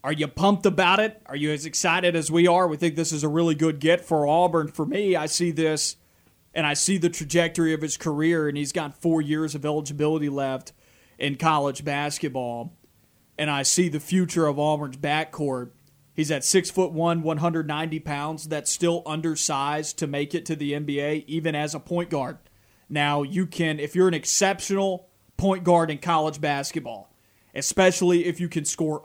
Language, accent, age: English, American, 30-49